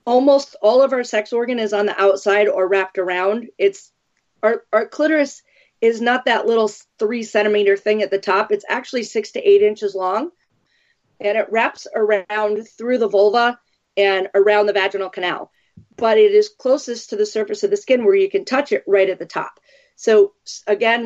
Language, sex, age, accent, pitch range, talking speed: English, female, 40-59, American, 195-255 Hz, 190 wpm